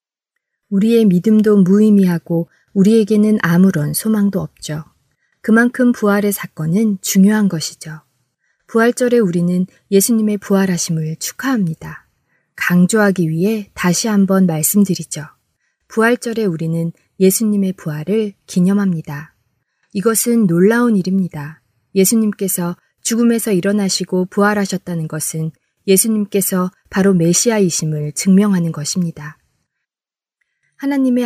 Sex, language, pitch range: female, Korean, 170-215 Hz